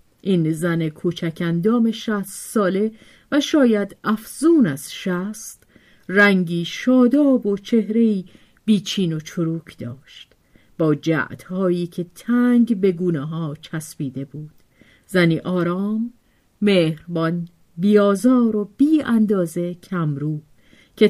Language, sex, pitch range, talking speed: Persian, female, 170-240 Hz, 100 wpm